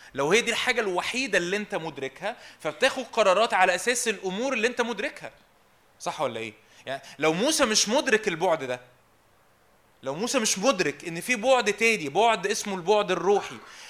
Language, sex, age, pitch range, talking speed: Arabic, male, 20-39, 170-235 Hz, 165 wpm